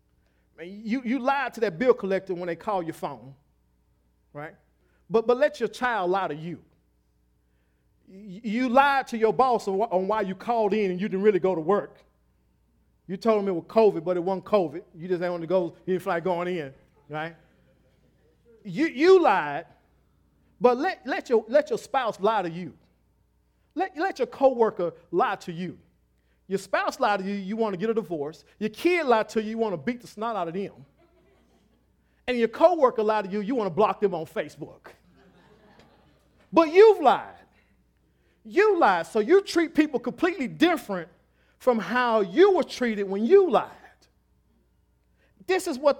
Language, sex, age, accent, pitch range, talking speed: English, male, 40-59, American, 180-250 Hz, 185 wpm